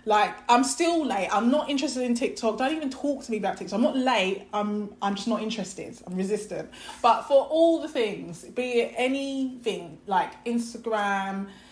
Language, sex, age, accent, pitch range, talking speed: English, female, 20-39, British, 195-250 Hz, 185 wpm